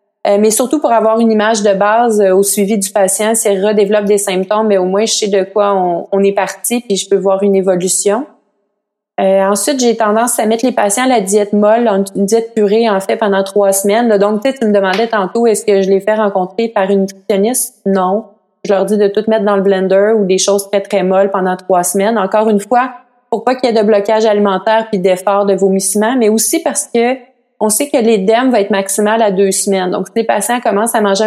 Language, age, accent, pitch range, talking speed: French, 30-49, Canadian, 195-220 Hz, 240 wpm